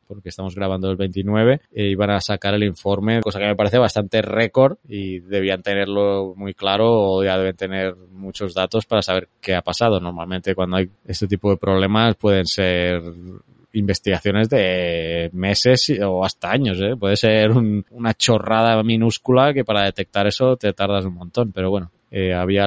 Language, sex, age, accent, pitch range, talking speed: Spanish, male, 20-39, Spanish, 95-120 Hz, 170 wpm